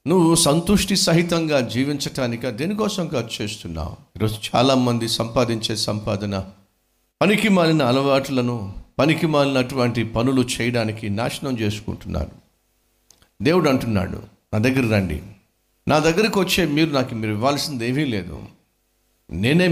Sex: male